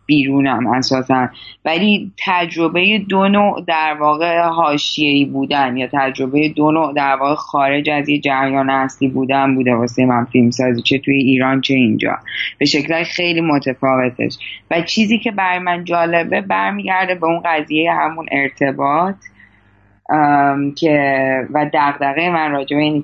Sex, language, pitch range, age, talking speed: female, Persian, 130-155 Hz, 10-29, 140 wpm